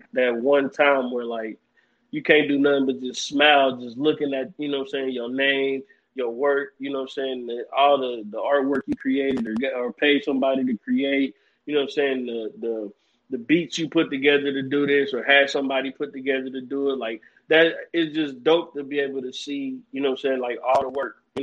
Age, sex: 20-39, male